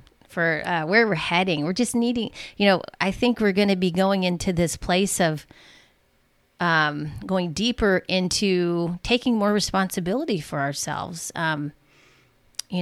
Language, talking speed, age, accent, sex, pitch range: English, 150 wpm, 30-49, American, female, 160-205 Hz